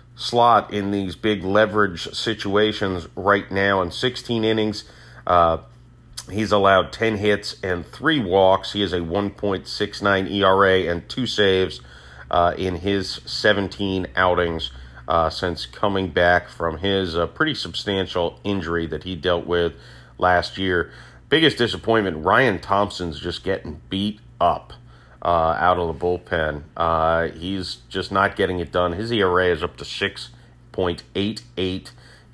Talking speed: 135 wpm